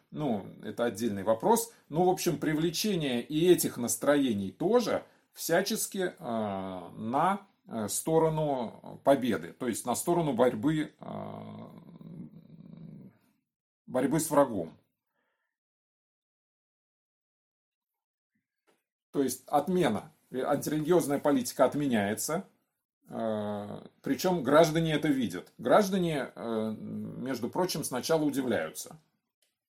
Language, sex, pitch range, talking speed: Russian, male, 110-185 Hz, 85 wpm